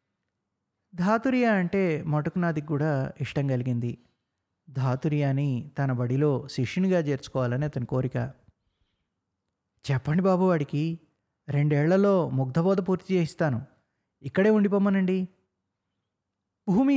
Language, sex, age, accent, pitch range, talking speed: Telugu, male, 20-39, native, 125-175 Hz, 80 wpm